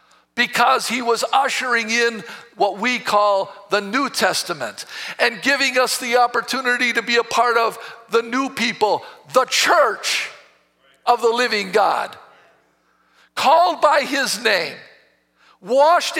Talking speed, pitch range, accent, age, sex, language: 130 wpm, 230-325 Hz, American, 60-79, male, English